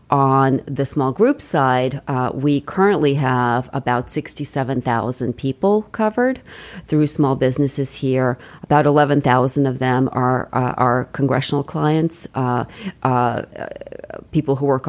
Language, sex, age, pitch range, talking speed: English, female, 40-59, 130-150 Hz, 120 wpm